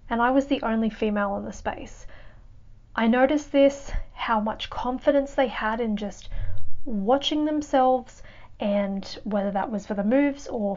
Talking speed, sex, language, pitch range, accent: 160 wpm, female, English, 205-240 Hz, Australian